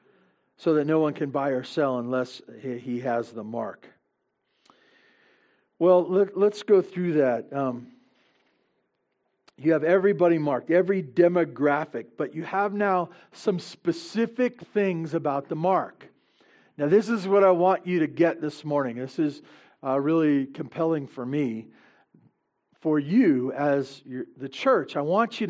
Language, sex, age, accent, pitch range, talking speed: English, male, 50-69, American, 145-195 Hz, 145 wpm